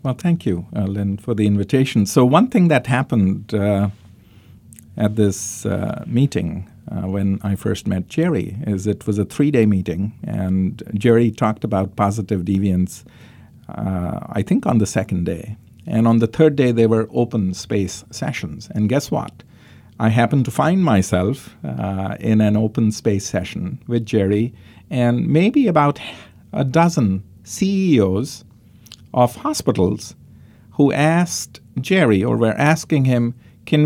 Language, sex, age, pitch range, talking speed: English, male, 50-69, 100-125 Hz, 150 wpm